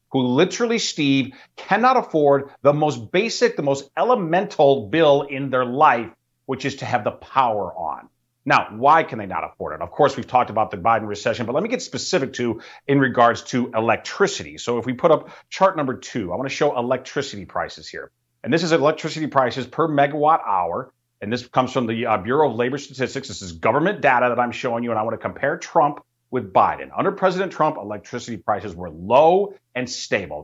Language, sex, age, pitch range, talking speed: English, male, 40-59, 120-160 Hz, 205 wpm